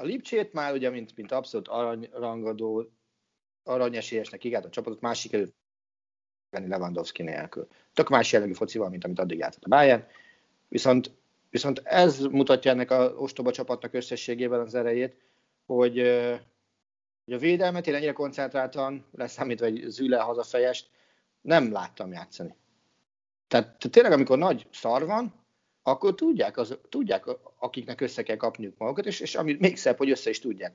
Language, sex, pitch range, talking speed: Hungarian, male, 110-150 Hz, 145 wpm